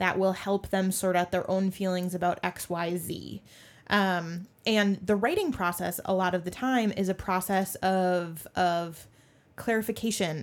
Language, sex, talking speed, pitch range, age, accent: English, female, 165 wpm, 175-200 Hz, 20-39, American